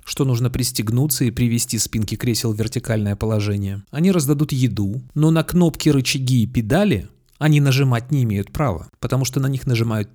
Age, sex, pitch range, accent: 30-49, male, 115-135 Hz, native